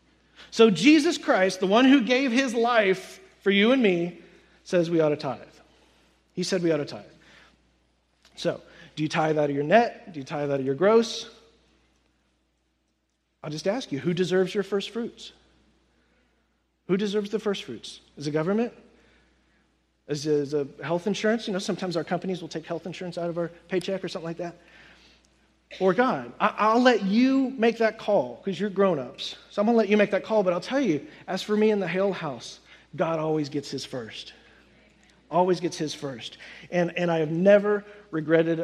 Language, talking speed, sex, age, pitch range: English, 190 wpm, male, 40-59, 150-205 Hz